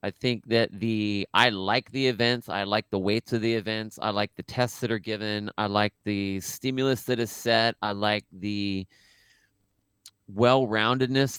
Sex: male